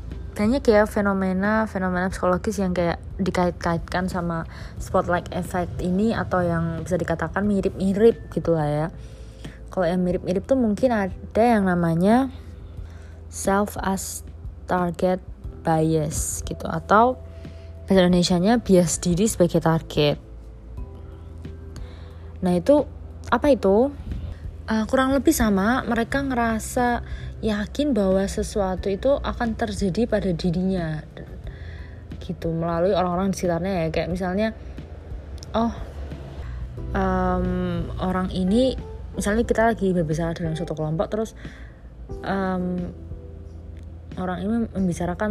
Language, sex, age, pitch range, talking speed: Indonesian, female, 20-39, 155-210 Hz, 105 wpm